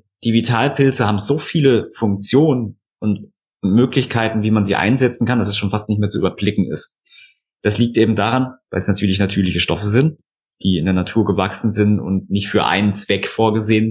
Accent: German